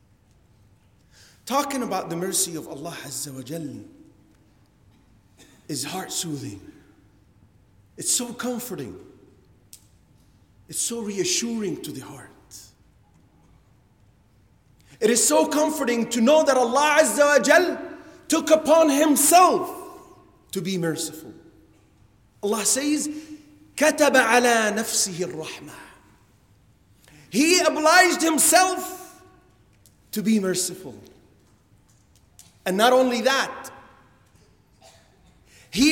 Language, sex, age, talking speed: English, male, 40-59, 85 wpm